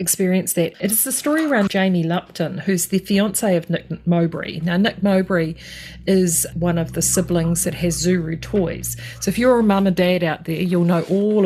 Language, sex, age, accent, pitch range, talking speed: English, female, 40-59, Australian, 170-195 Hz, 205 wpm